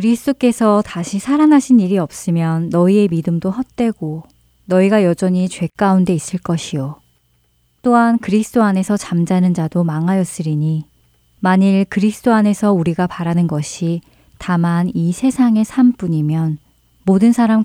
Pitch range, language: 155-210 Hz, Korean